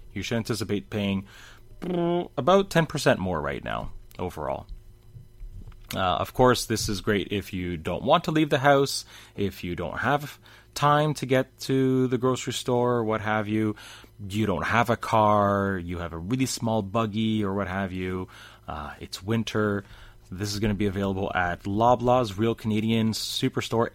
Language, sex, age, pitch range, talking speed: English, male, 30-49, 100-125 Hz, 170 wpm